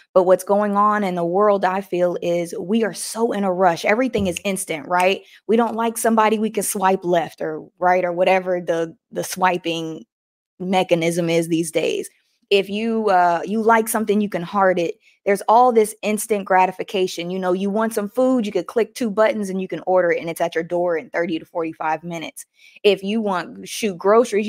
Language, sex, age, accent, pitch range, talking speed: English, female, 20-39, American, 175-215 Hz, 210 wpm